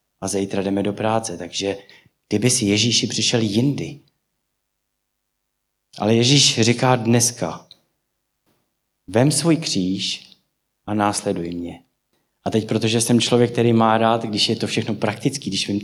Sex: male